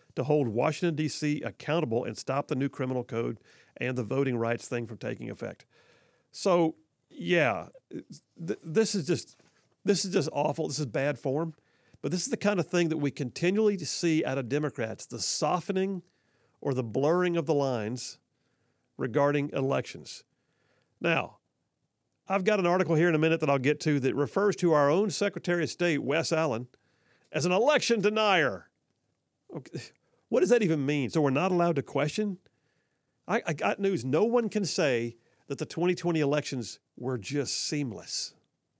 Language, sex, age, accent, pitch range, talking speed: English, male, 50-69, American, 135-175 Hz, 170 wpm